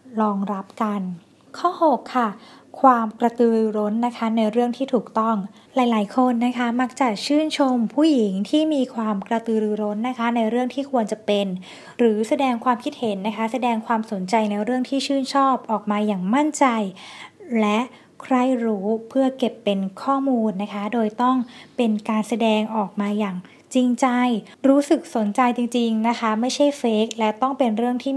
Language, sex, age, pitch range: Thai, female, 20-39, 215-255 Hz